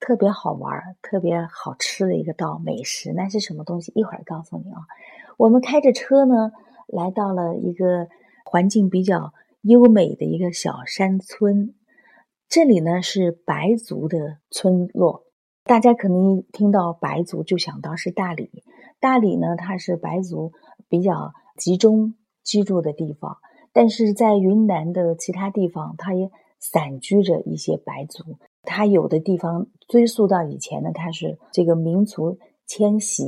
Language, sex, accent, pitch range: Chinese, female, native, 170-220 Hz